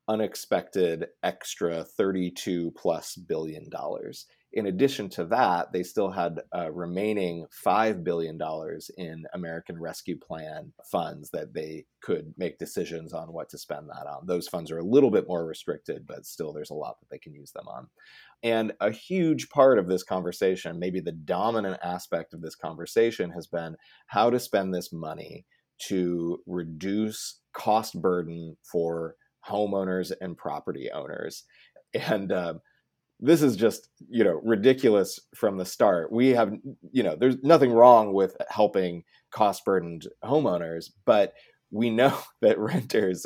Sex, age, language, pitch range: male, 30-49, English, 85-110 Hz